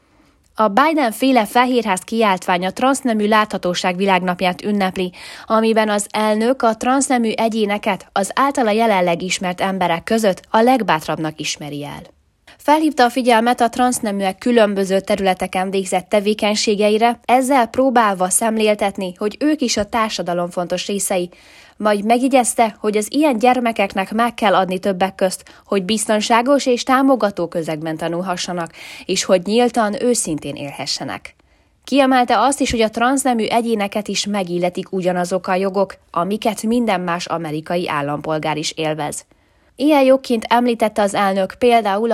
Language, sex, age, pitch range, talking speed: Hungarian, female, 20-39, 185-235 Hz, 130 wpm